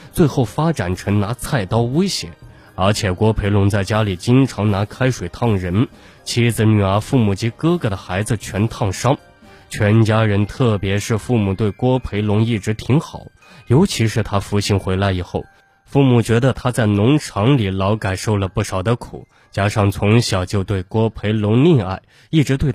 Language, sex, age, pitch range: Chinese, male, 20-39, 100-125 Hz